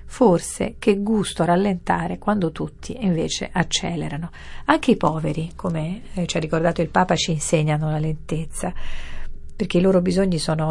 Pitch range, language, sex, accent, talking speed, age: 155-185 Hz, Italian, female, native, 145 wpm, 40-59